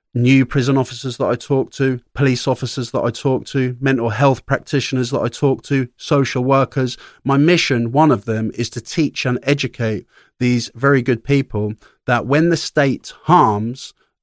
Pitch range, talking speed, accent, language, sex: 115-140 Hz, 175 wpm, British, English, male